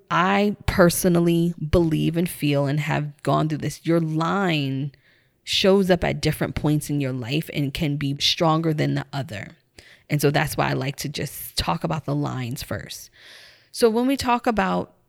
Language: English